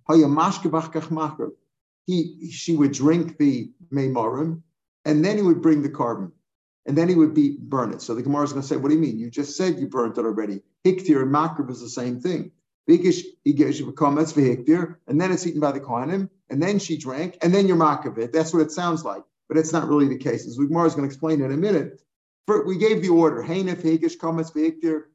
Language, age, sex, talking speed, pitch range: English, 50-69, male, 220 wpm, 145-175 Hz